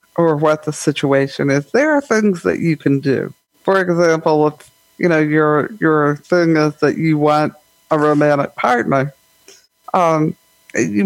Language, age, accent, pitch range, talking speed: English, 60-79, American, 145-165 Hz, 155 wpm